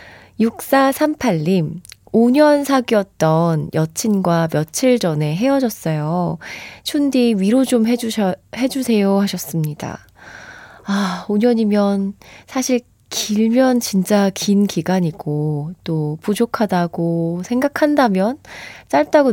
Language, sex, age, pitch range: Korean, female, 20-39, 165-235 Hz